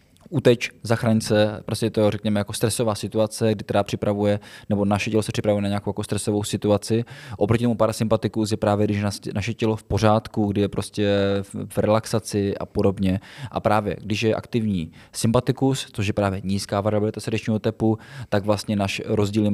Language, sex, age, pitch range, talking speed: Czech, male, 20-39, 100-110 Hz, 175 wpm